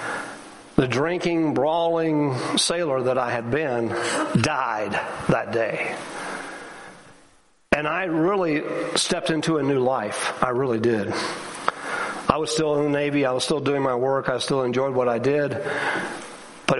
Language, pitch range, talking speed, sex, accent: English, 130-165 Hz, 145 wpm, male, American